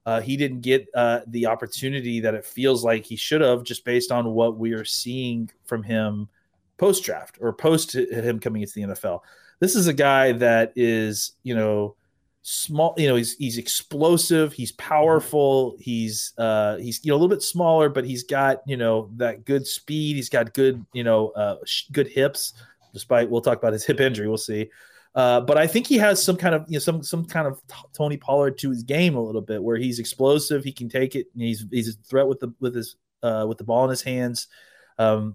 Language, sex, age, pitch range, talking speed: English, male, 30-49, 115-140 Hz, 220 wpm